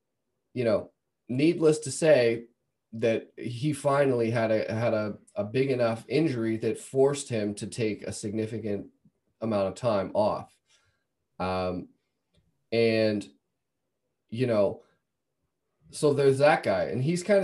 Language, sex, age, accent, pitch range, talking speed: English, male, 20-39, American, 100-140 Hz, 130 wpm